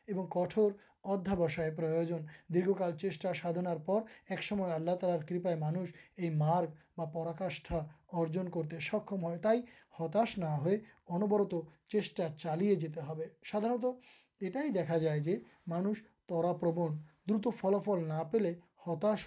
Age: 30-49